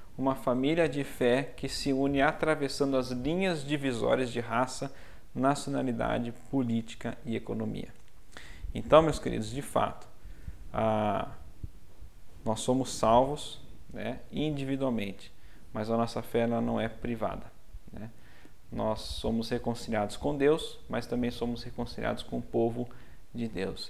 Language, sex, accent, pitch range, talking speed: Portuguese, male, Brazilian, 115-130 Hz, 125 wpm